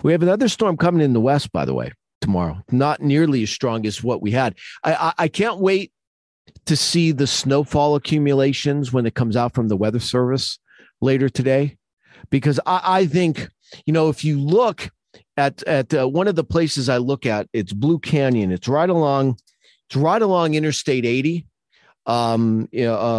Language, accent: English, American